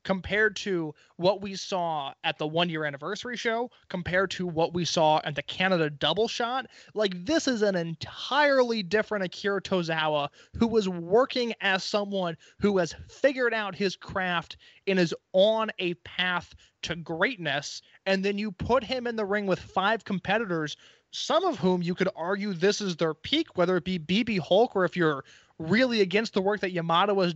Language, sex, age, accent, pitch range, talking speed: English, male, 20-39, American, 170-215 Hz, 180 wpm